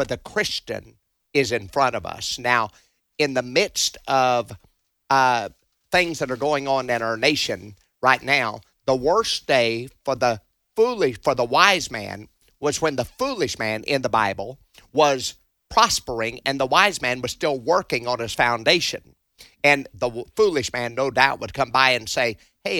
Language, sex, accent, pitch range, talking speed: English, male, American, 115-145 Hz, 170 wpm